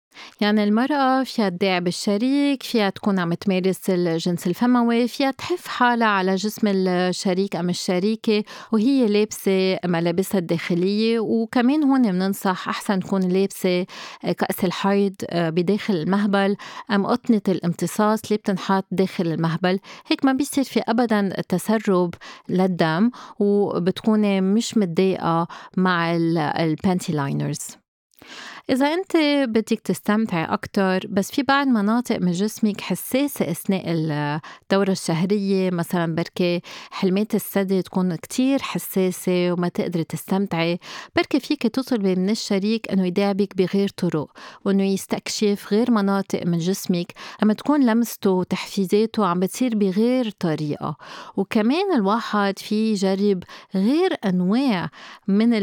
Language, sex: Arabic, female